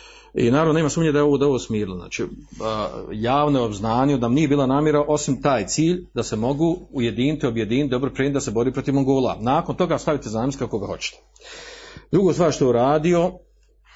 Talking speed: 195 wpm